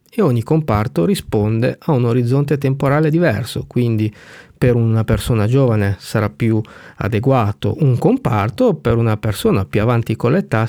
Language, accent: Italian, native